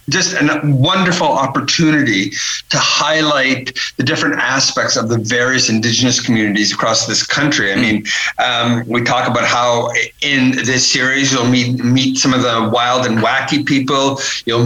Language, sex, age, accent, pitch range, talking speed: English, male, 50-69, American, 125-145 Hz, 155 wpm